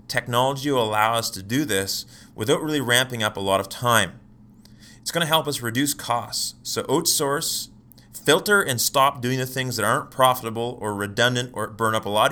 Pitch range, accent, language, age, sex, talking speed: 100-120 Hz, American, English, 30-49, male, 195 wpm